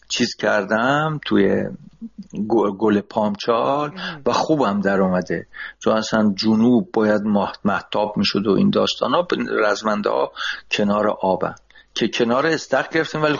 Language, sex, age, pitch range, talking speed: Persian, male, 60-79, 105-175 Hz, 130 wpm